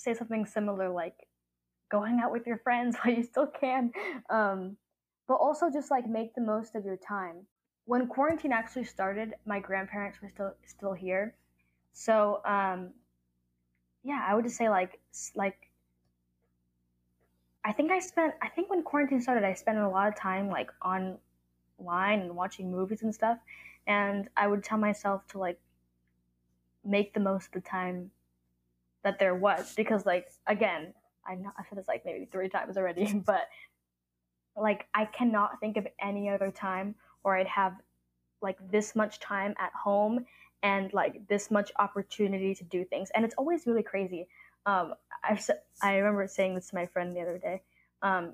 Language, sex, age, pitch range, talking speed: English, female, 10-29, 180-220 Hz, 170 wpm